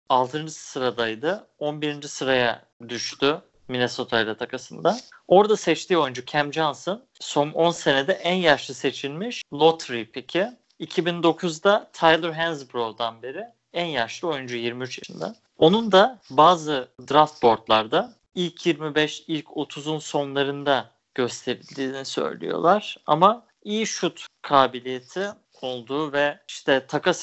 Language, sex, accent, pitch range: Turkish, male, native, 130-175 Hz